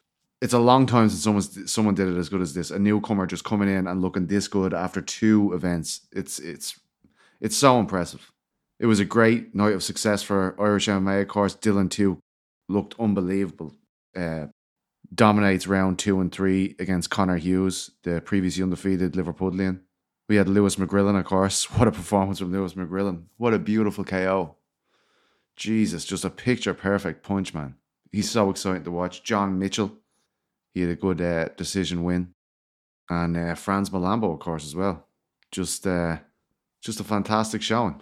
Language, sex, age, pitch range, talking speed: English, male, 20-39, 90-105 Hz, 170 wpm